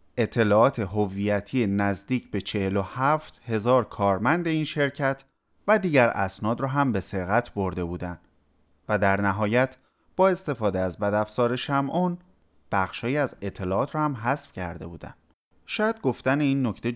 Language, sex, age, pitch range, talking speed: Persian, male, 30-49, 95-135 Hz, 140 wpm